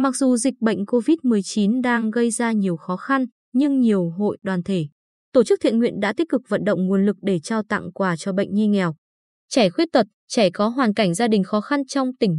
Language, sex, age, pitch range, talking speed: Vietnamese, female, 20-39, 195-250 Hz, 235 wpm